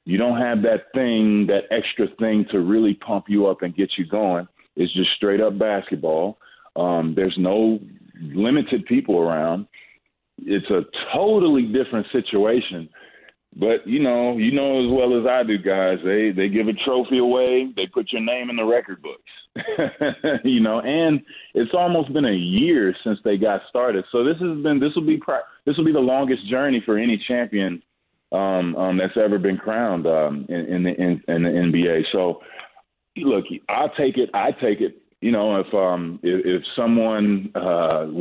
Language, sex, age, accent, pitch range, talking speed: English, male, 30-49, American, 95-125 Hz, 180 wpm